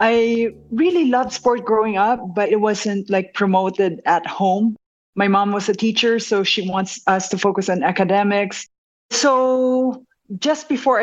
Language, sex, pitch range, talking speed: Filipino, female, 195-230 Hz, 160 wpm